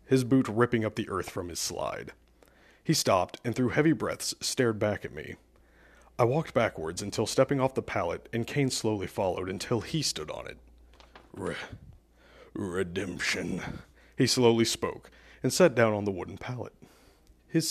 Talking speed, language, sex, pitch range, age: 165 wpm, English, male, 110-140 Hz, 30-49